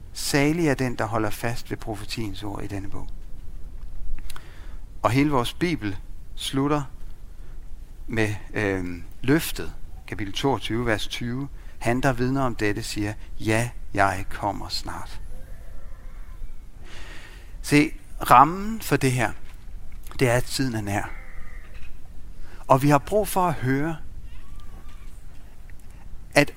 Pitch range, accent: 90-130 Hz, native